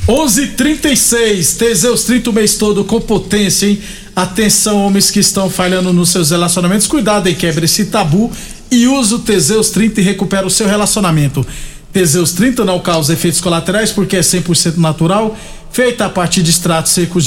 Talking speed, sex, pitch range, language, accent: 170 wpm, male, 175-220 Hz, Portuguese, Brazilian